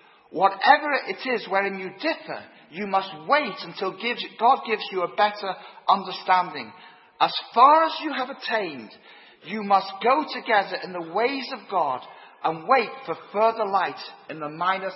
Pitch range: 170-220 Hz